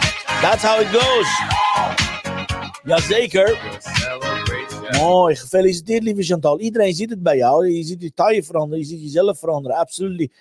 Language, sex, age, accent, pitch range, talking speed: Dutch, male, 50-69, Dutch, 130-190 Hz, 140 wpm